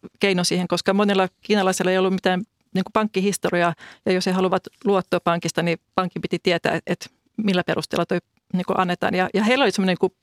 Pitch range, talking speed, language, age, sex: 180-200 Hz, 190 wpm, Finnish, 40-59, female